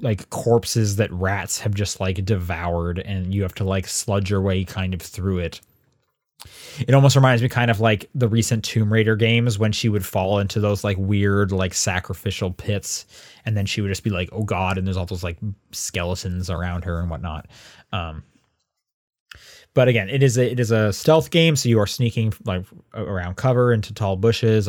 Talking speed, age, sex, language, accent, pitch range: 200 wpm, 20-39, male, English, American, 100-125 Hz